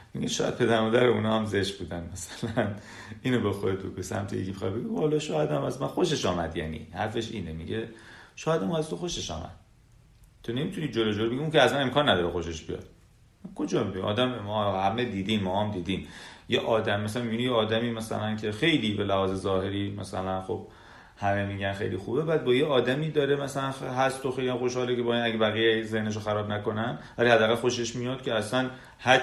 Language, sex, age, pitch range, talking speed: Persian, male, 30-49, 100-140 Hz, 200 wpm